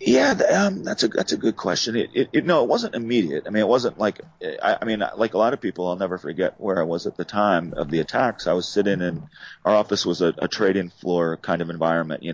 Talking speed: 255 wpm